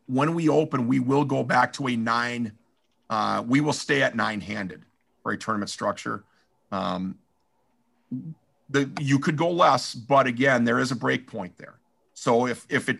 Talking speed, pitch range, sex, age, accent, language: 180 wpm, 120-145 Hz, male, 50-69, American, English